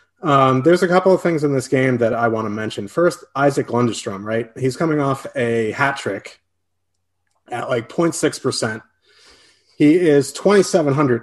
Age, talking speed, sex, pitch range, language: 30-49, 155 wpm, male, 110-145 Hz, English